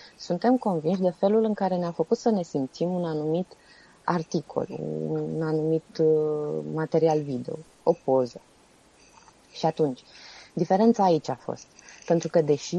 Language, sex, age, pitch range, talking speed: Romanian, female, 20-39, 155-200 Hz, 135 wpm